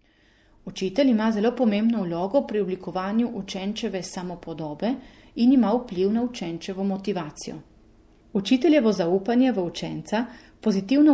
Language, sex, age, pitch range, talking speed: Italian, female, 30-49, 180-230 Hz, 110 wpm